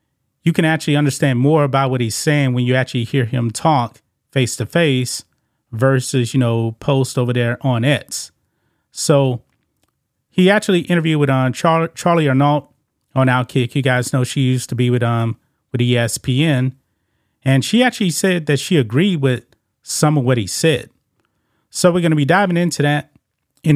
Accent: American